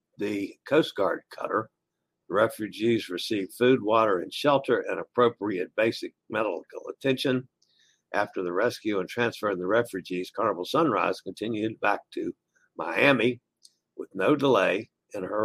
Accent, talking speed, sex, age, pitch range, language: American, 130 wpm, male, 60-79, 115-135 Hz, English